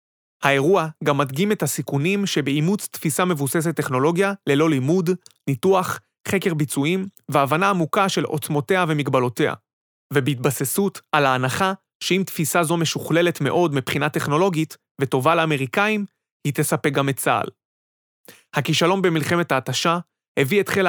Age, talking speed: 30-49, 120 wpm